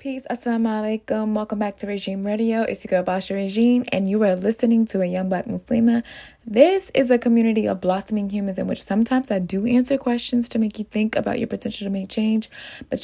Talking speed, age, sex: 215 wpm, 20-39, female